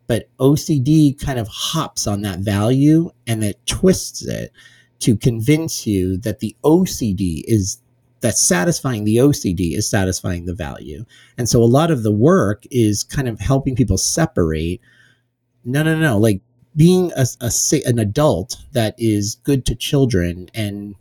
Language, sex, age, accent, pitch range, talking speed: English, male, 30-49, American, 105-135 Hz, 160 wpm